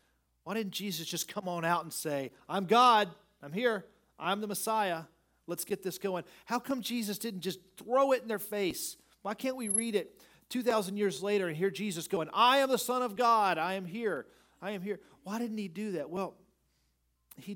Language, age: English, 40-59